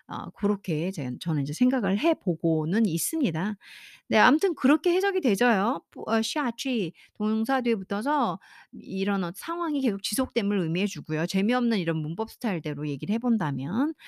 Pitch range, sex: 170-240 Hz, female